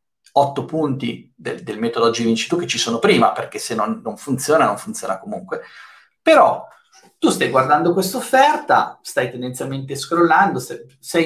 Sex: male